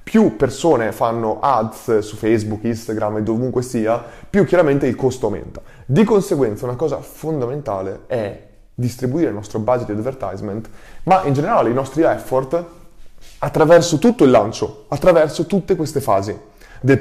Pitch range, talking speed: 110-155 Hz, 150 wpm